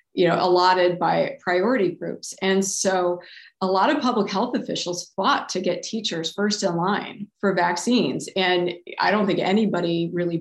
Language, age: English, 30-49